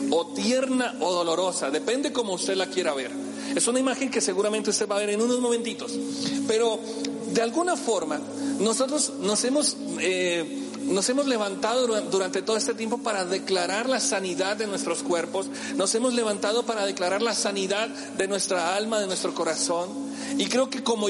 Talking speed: 170 wpm